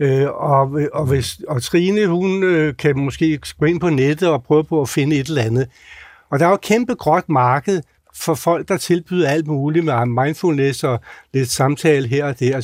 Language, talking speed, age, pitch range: Danish, 205 wpm, 60-79, 135-175 Hz